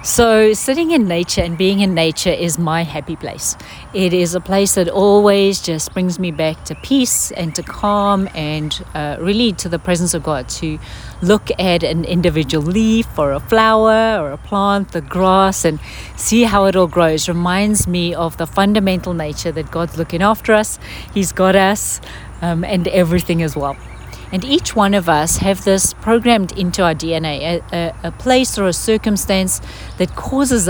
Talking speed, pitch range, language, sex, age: 180 wpm, 165-205 Hz, English, female, 40-59